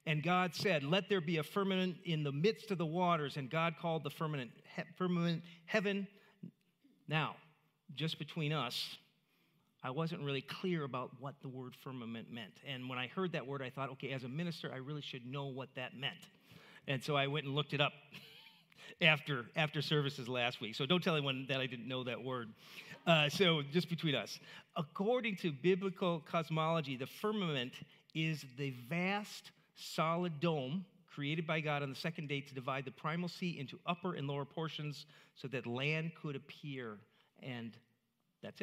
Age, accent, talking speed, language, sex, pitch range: 40-59, American, 185 wpm, English, male, 140-180 Hz